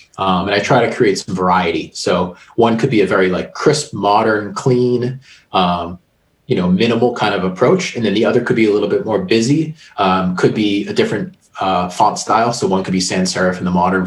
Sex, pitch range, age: male, 95-125 Hz, 30-49